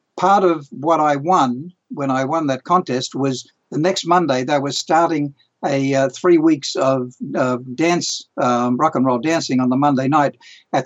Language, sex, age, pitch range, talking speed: English, male, 60-79, 135-165 Hz, 190 wpm